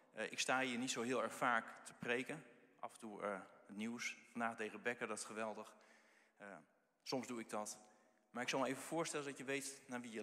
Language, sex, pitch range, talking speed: Dutch, male, 105-125 Hz, 230 wpm